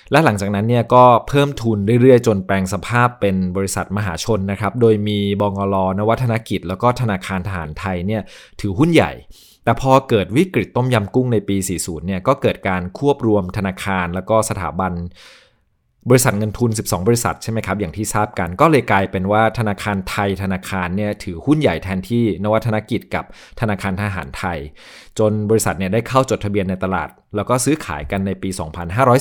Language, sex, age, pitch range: English, male, 20-39, 95-115 Hz